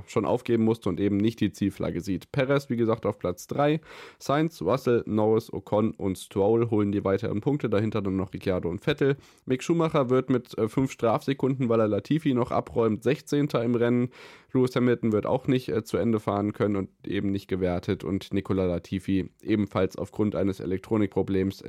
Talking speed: 185 wpm